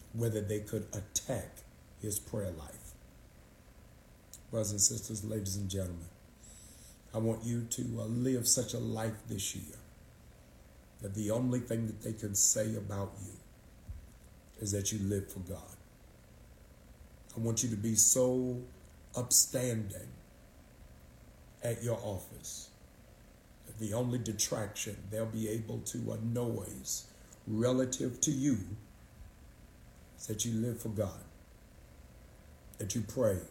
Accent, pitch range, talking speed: American, 95-115 Hz, 125 wpm